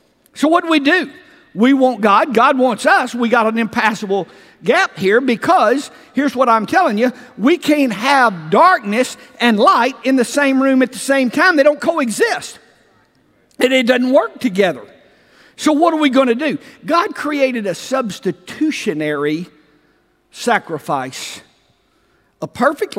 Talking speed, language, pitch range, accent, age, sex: 155 wpm, English, 225-300 Hz, American, 50-69, male